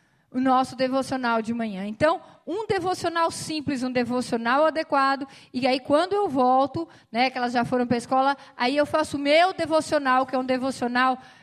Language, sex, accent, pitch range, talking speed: Portuguese, female, Brazilian, 235-290 Hz, 185 wpm